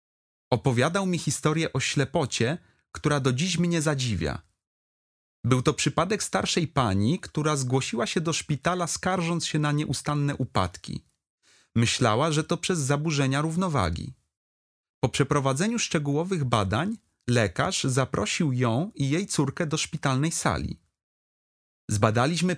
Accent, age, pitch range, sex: native, 30-49, 115-165 Hz, male